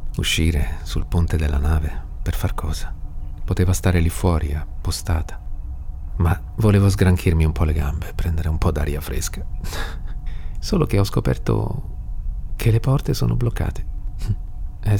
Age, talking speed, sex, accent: 40-59, 140 wpm, male, native